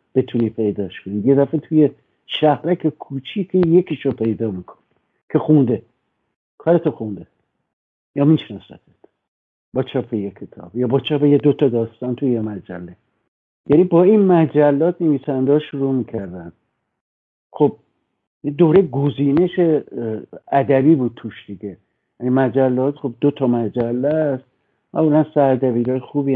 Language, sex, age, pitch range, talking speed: Persian, male, 60-79, 115-155 Hz, 125 wpm